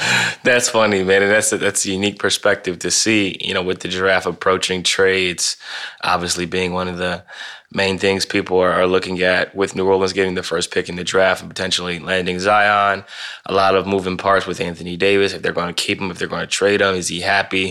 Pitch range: 90-100 Hz